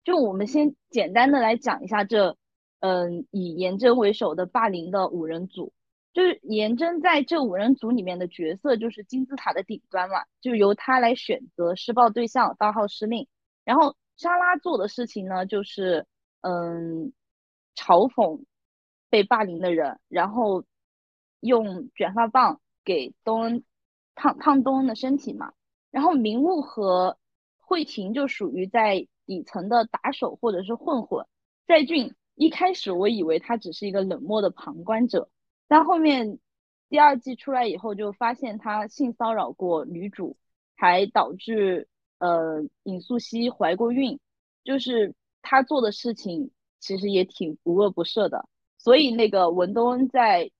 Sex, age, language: female, 20-39, Chinese